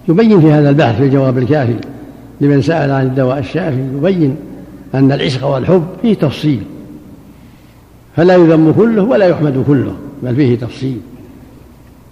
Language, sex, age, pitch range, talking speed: Arabic, male, 70-89, 145-170 Hz, 135 wpm